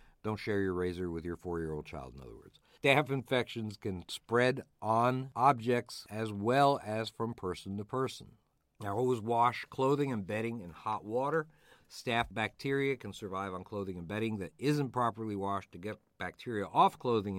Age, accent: 50-69, American